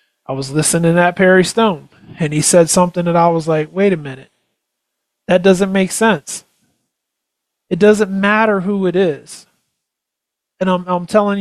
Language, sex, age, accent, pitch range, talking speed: English, male, 30-49, American, 165-205 Hz, 165 wpm